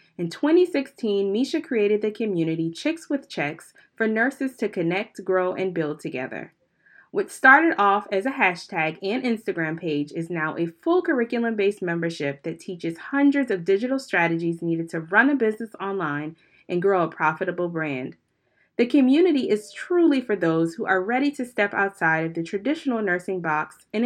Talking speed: 165 wpm